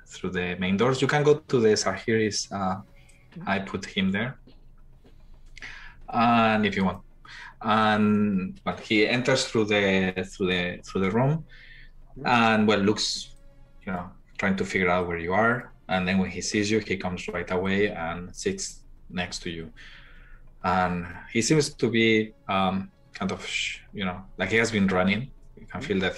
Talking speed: 175 wpm